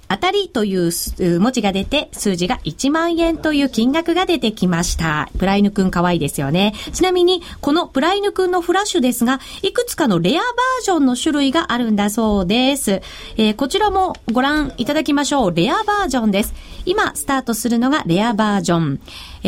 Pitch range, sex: 215-355 Hz, female